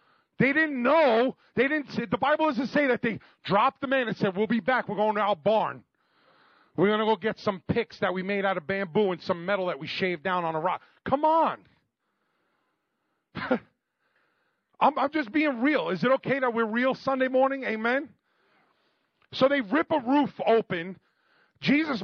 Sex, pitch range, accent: male, 185-255 Hz, American